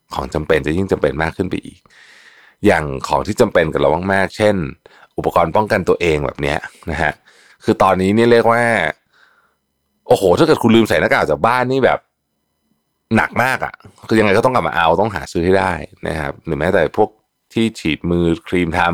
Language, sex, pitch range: Thai, male, 75-105 Hz